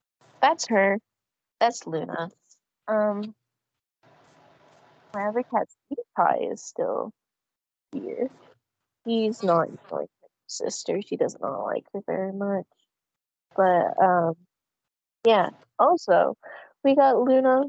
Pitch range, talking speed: 195-295 Hz, 105 wpm